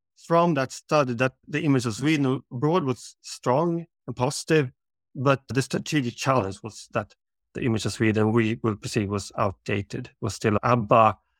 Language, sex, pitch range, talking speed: English, male, 115-145 Hz, 170 wpm